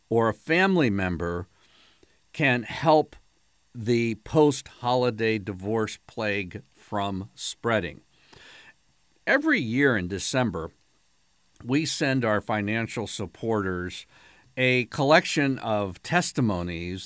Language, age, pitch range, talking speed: English, 50-69, 105-130 Hz, 90 wpm